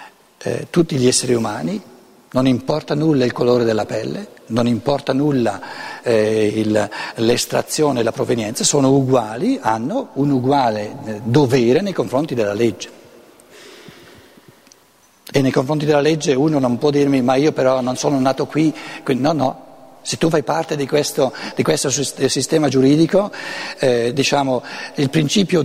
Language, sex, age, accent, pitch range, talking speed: Italian, male, 60-79, native, 130-165 Hz, 145 wpm